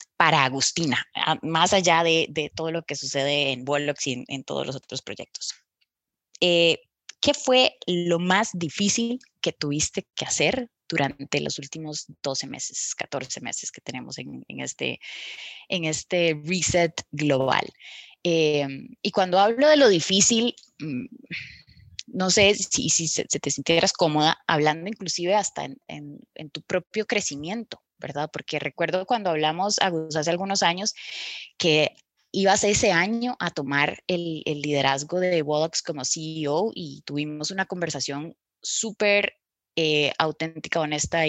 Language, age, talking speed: Spanish, 20-39, 145 wpm